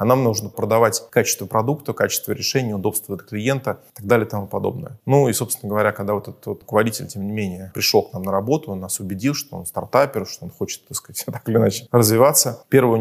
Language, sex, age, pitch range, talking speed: Russian, male, 20-39, 105-130 Hz, 230 wpm